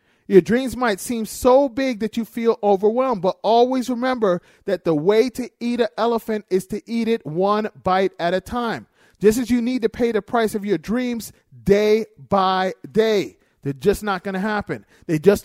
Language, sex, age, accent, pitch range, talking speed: English, male, 40-59, American, 195-240 Hz, 200 wpm